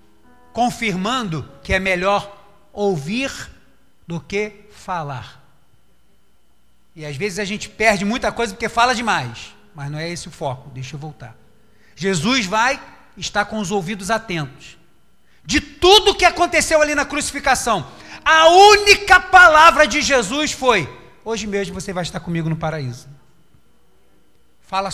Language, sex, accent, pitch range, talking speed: Portuguese, male, Brazilian, 165-260 Hz, 135 wpm